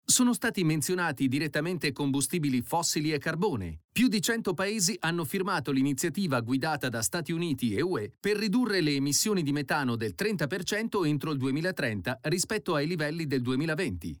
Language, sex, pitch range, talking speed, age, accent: Italian, male, 135-195 Hz, 155 wpm, 40-59, native